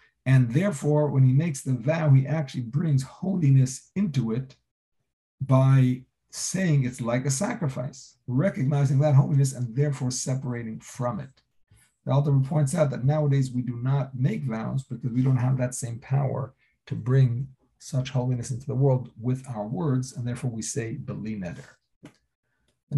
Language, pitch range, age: English, 125-145 Hz, 50-69